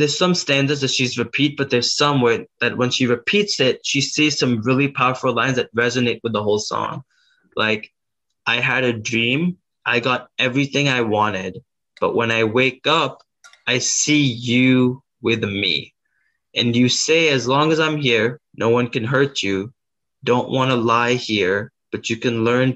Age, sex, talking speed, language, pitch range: 20-39, male, 180 wpm, English, 110-135 Hz